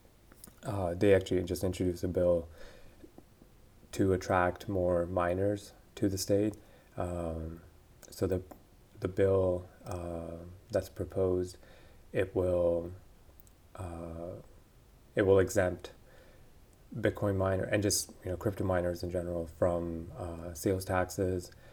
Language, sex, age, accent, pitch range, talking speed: English, male, 30-49, American, 80-95 Hz, 115 wpm